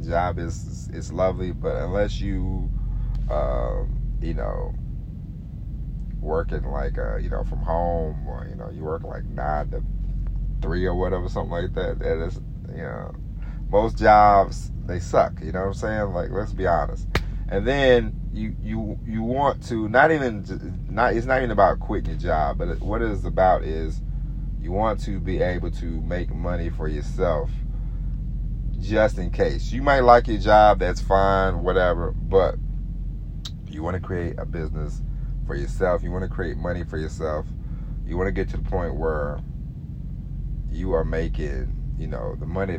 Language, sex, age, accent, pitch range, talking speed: English, male, 30-49, American, 80-105 Hz, 175 wpm